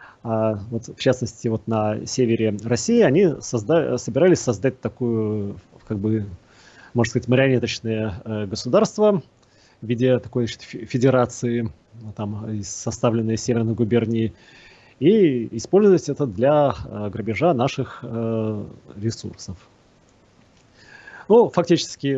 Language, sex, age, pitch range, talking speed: Russian, male, 30-49, 110-135 Hz, 100 wpm